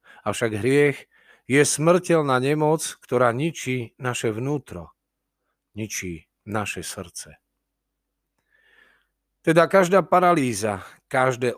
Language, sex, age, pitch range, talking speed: Slovak, male, 40-59, 100-145 Hz, 90 wpm